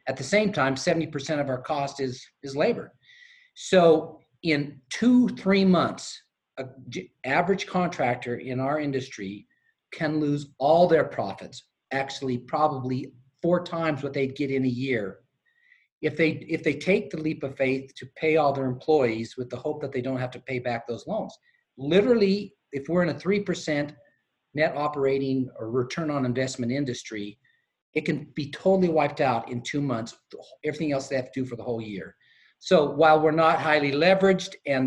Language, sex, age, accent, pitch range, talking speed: English, male, 40-59, American, 130-160 Hz, 175 wpm